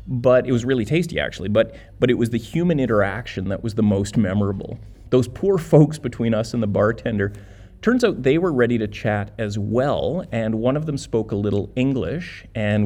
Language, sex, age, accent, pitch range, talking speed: English, male, 30-49, American, 100-125 Hz, 205 wpm